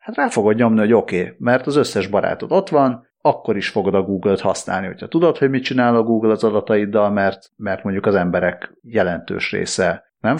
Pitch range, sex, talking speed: 100-130 Hz, male, 210 wpm